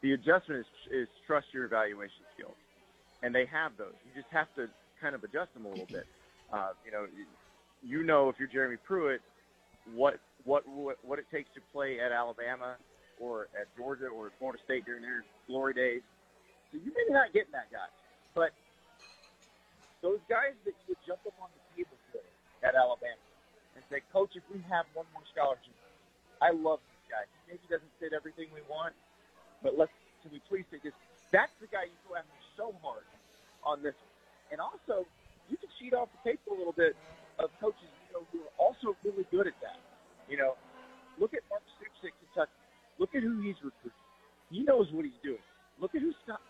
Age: 40-59